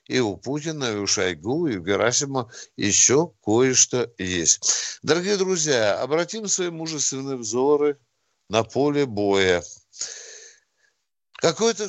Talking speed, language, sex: 110 wpm, Russian, male